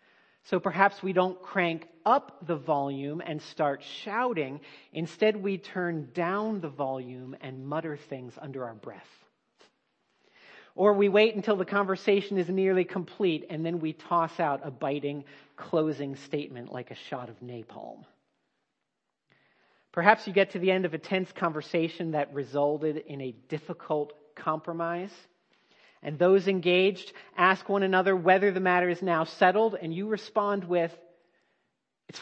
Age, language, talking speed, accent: 40-59, English, 145 wpm, American